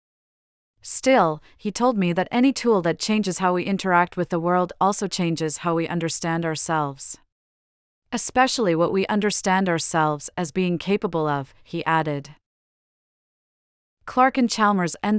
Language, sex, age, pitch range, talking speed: English, female, 30-49, 165-200 Hz, 140 wpm